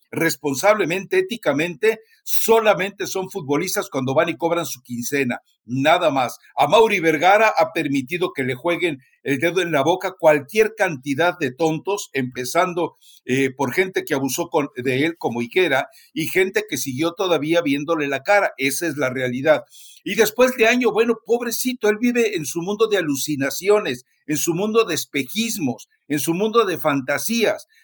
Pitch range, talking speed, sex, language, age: 150-205 Hz, 160 wpm, male, Spanish, 60-79